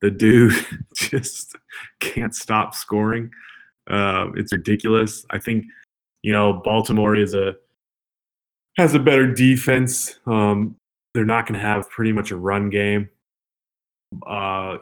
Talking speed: 125 wpm